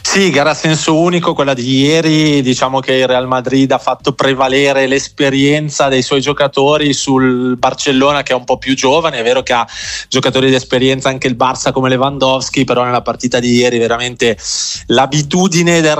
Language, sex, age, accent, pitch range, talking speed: Italian, male, 20-39, native, 115-135 Hz, 180 wpm